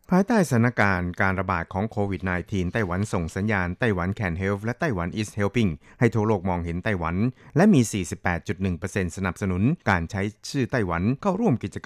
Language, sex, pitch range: Thai, male, 90-115 Hz